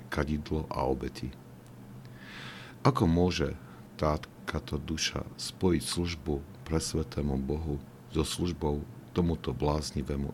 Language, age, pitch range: Slovak, 50-69, 70-80 Hz